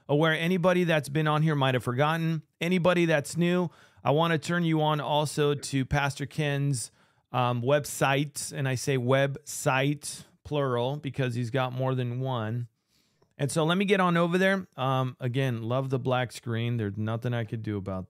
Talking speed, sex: 180 wpm, male